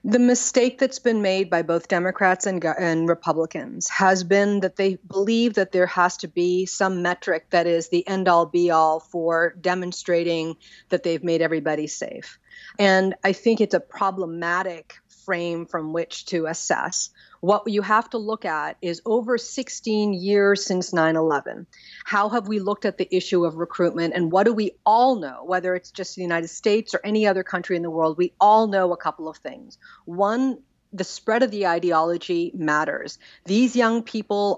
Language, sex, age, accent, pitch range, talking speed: English, female, 40-59, American, 175-220 Hz, 180 wpm